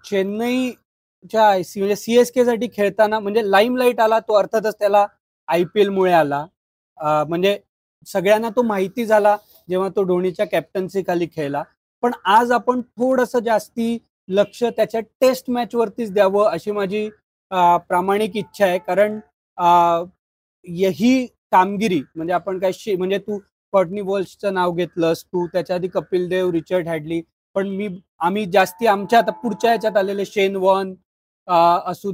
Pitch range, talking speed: 180-230 Hz, 90 wpm